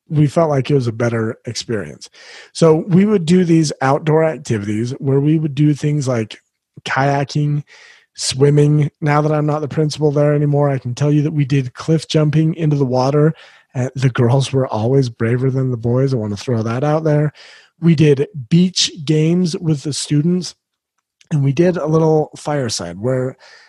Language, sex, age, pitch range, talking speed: English, male, 30-49, 130-155 Hz, 180 wpm